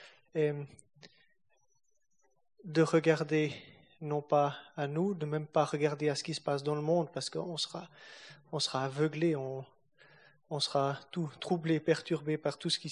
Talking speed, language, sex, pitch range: 165 wpm, French, male, 150-170 Hz